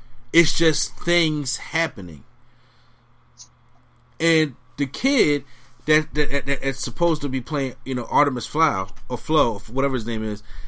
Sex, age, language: male, 30-49, English